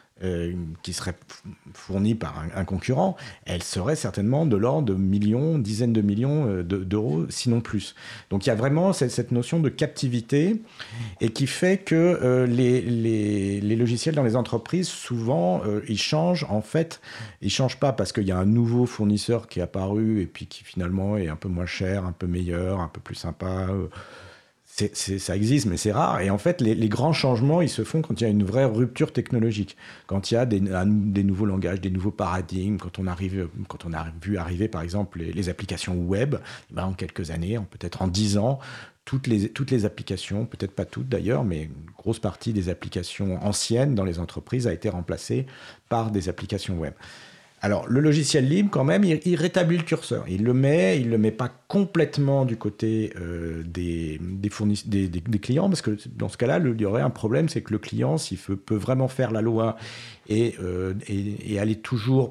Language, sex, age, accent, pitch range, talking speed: French, male, 50-69, French, 95-125 Hz, 205 wpm